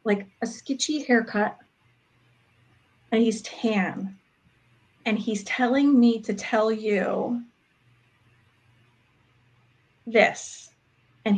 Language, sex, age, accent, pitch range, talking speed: English, female, 30-49, American, 190-240 Hz, 85 wpm